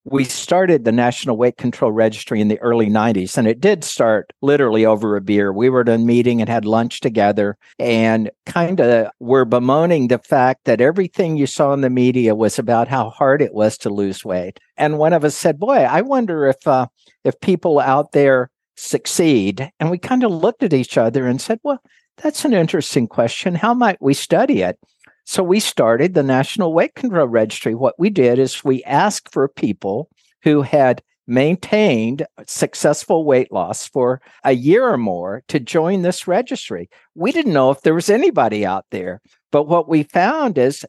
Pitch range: 120-175 Hz